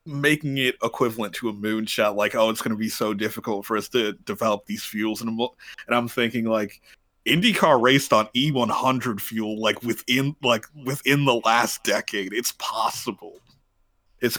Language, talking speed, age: English, 165 wpm, 30-49